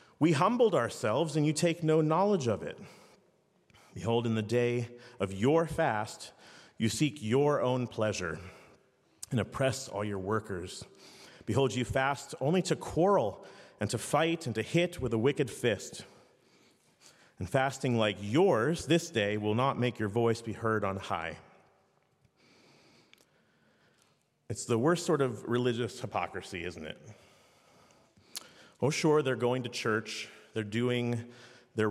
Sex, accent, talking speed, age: male, American, 145 wpm, 40-59